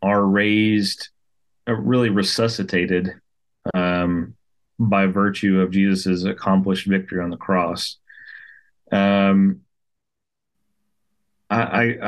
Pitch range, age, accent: 95-110 Hz, 30-49, American